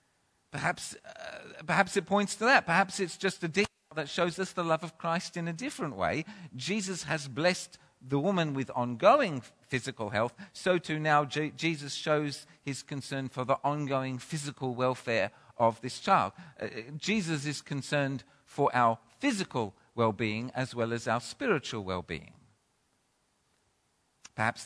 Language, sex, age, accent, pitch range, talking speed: English, male, 50-69, British, 130-180 Hz, 155 wpm